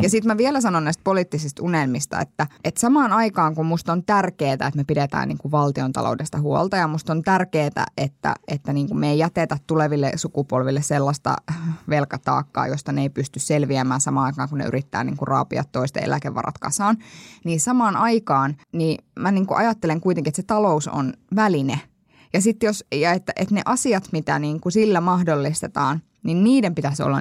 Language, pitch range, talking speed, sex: Finnish, 145-190 Hz, 180 wpm, female